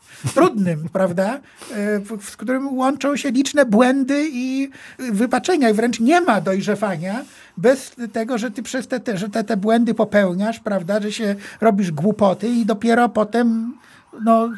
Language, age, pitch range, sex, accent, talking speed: Polish, 60-79, 205-245 Hz, male, native, 155 wpm